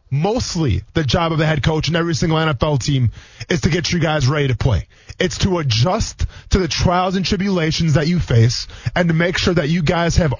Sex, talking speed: male, 225 wpm